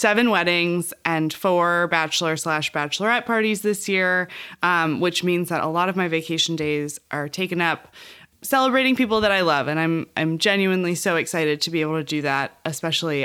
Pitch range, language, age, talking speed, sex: 155-190 Hz, English, 20-39, 185 wpm, female